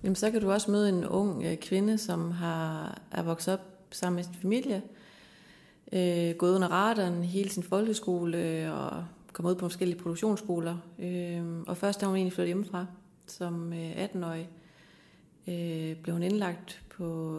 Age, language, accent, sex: 30-49, Danish, native, female